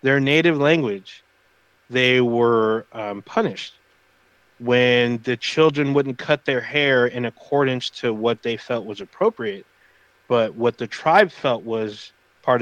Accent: American